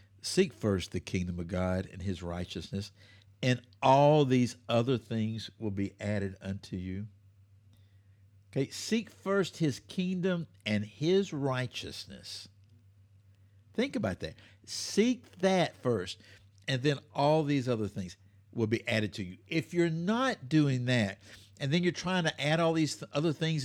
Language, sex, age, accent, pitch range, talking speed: English, male, 60-79, American, 100-145 Hz, 150 wpm